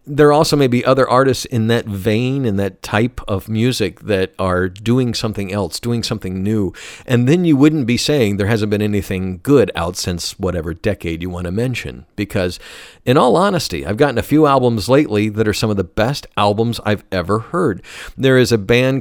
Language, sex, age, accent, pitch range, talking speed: English, male, 50-69, American, 95-120 Hz, 205 wpm